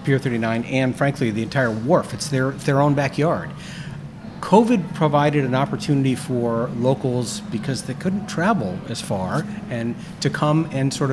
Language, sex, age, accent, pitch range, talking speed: English, male, 50-69, American, 130-165 Hz, 155 wpm